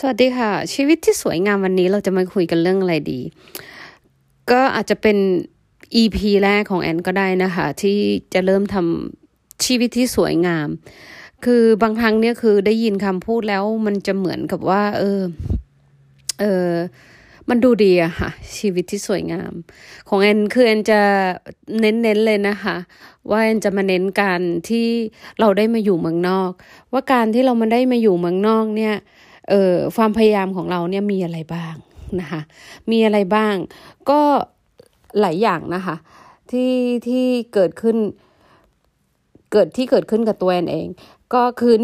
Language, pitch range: Thai, 180-225 Hz